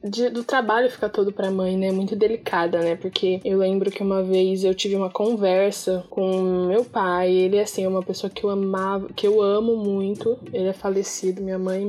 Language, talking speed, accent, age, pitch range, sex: Portuguese, 205 wpm, Brazilian, 10-29, 190-230 Hz, female